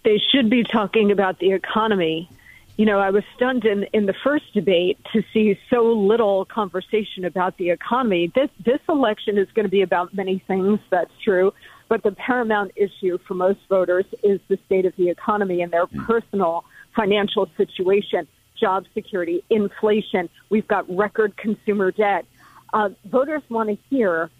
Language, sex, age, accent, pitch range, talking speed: English, female, 50-69, American, 190-230 Hz, 165 wpm